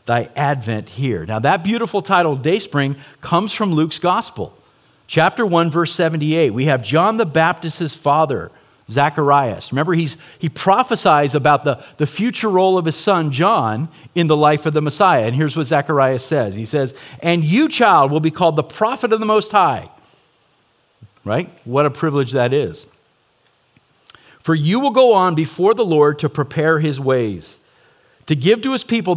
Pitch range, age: 140-185 Hz, 50-69